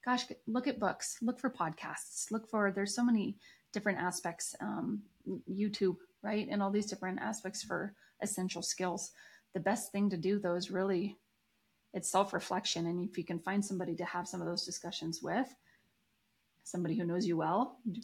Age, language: 30-49, English